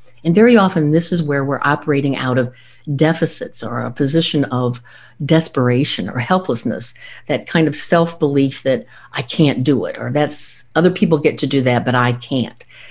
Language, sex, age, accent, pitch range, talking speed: English, female, 60-79, American, 140-205 Hz, 175 wpm